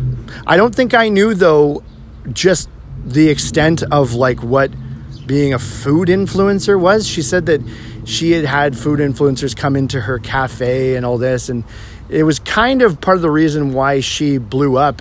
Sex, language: male, English